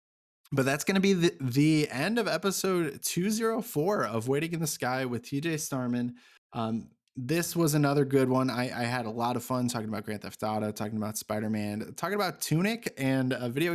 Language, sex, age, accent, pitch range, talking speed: English, male, 20-39, American, 120-155 Hz, 200 wpm